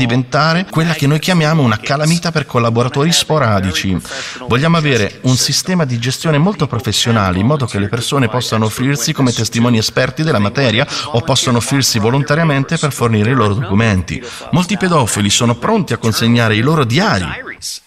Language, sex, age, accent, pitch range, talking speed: Italian, male, 40-59, native, 110-150 Hz, 160 wpm